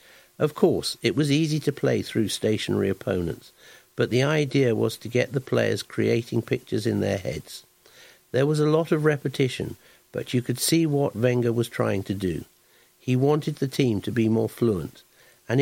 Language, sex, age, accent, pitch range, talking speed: English, male, 60-79, British, 105-135 Hz, 185 wpm